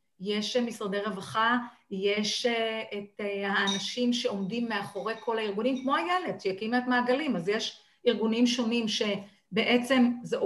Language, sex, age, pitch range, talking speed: Hebrew, female, 40-59, 205-255 Hz, 120 wpm